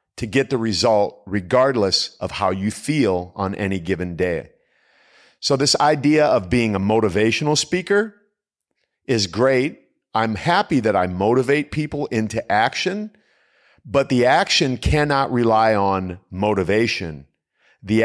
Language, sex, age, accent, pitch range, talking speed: English, male, 50-69, American, 95-135 Hz, 130 wpm